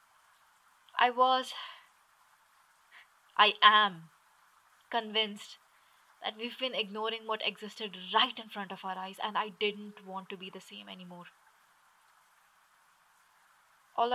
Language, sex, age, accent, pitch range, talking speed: English, female, 20-39, Indian, 185-205 Hz, 115 wpm